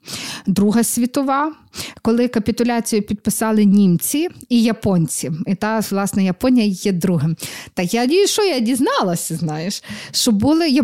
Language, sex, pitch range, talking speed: Ukrainian, female, 205-265 Hz, 120 wpm